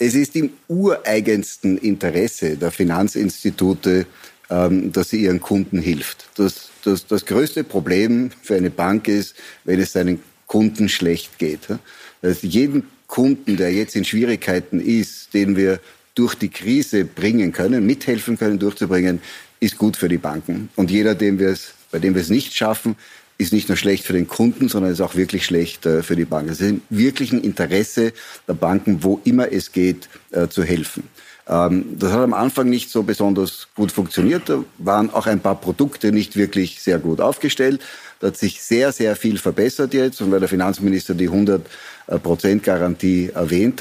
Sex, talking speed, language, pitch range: male, 165 wpm, German, 90-115 Hz